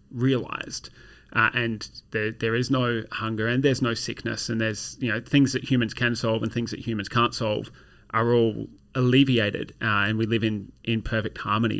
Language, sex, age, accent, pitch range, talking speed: English, male, 30-49, Australian, 110-130 Hz, 195 wpm